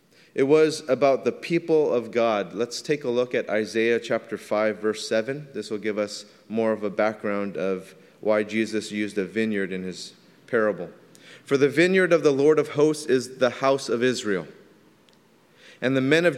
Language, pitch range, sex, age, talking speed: English, 100-130 Hz, male, 30-49, 185 wpm